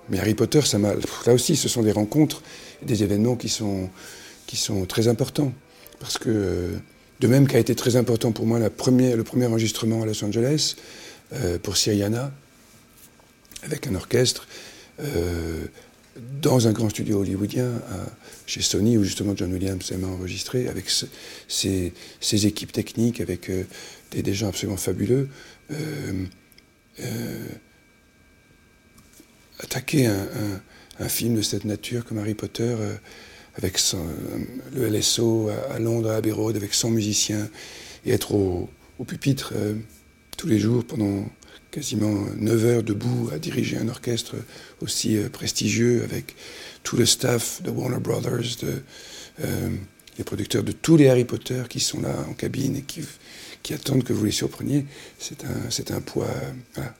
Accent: French